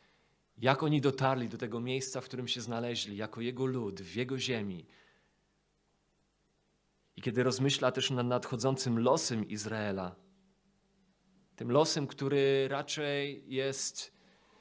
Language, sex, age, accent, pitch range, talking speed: Polish, male, 30-49, native, 120-145 Hz, 120 wpm